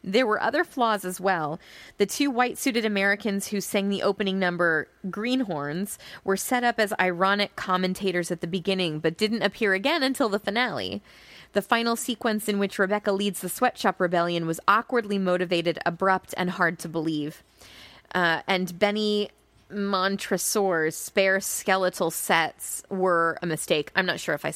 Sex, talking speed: female, 160 wpm